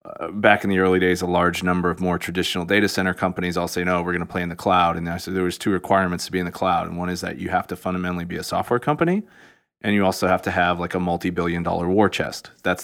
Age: 30-49